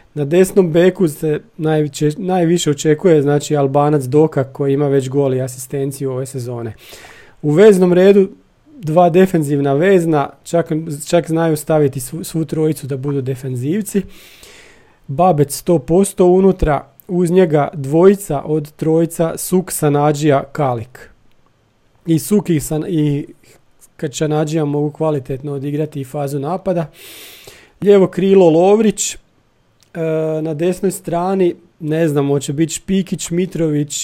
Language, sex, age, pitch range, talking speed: Croatian, male, 40-59, 145-175 Hz, 120 wpm